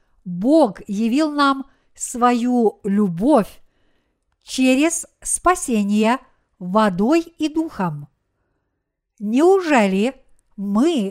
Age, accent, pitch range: 50-69, native, 210-275 Hz